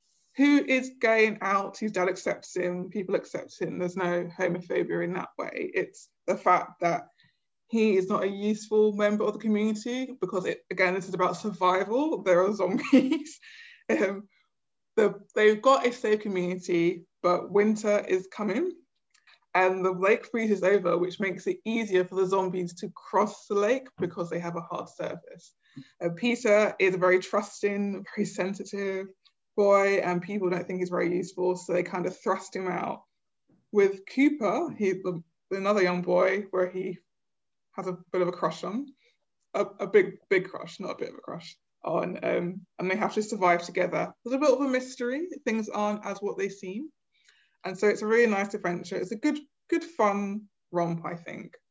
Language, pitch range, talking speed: English, 185-225 Hz, 180 wpm